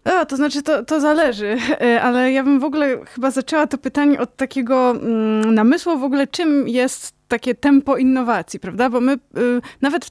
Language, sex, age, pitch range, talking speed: Polish, female, 20-39, 225-275 Hz, 190 wpm